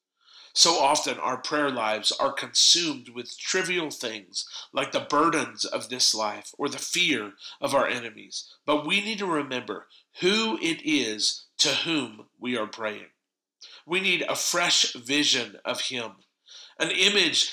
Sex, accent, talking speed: male, American, 150 wpm